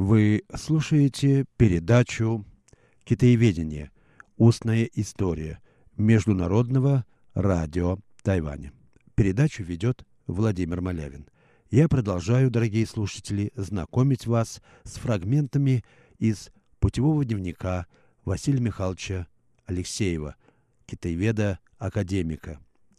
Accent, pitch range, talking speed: native, 95-125 Hz, 75 wpm